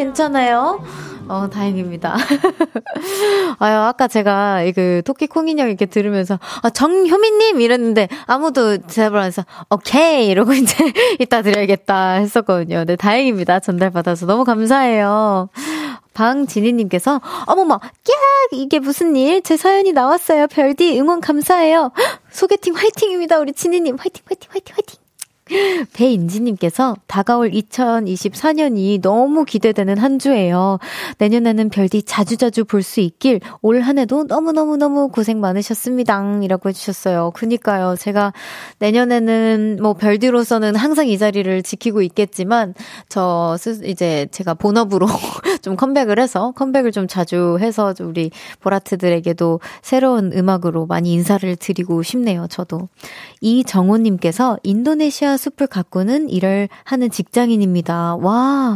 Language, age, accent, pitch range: Korean, 20-39, native, 200-285 Hz